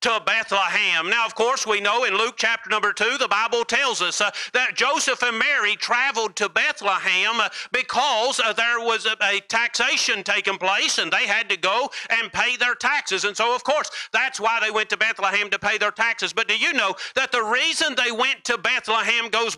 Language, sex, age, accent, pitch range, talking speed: English, male, 50-69, American, 210-250 Hz, 210 wpm